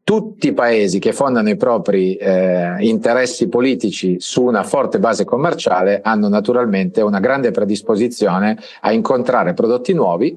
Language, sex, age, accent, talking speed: Italian, male, 40-59, native, 140 wpm